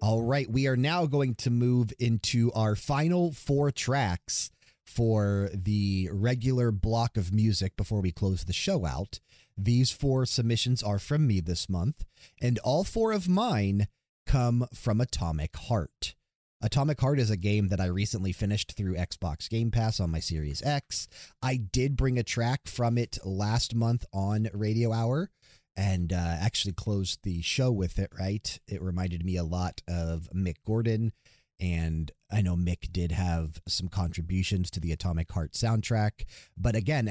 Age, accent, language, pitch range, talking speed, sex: 30-49, American, English, 90-120 Hz, 165 wpm, male